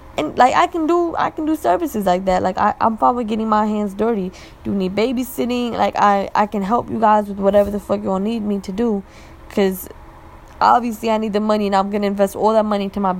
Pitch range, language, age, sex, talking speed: 200-225 Hz, English, 10-29, female, 250 wpm